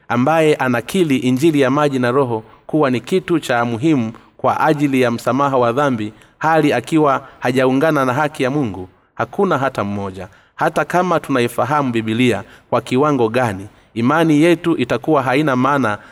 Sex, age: male, 30-49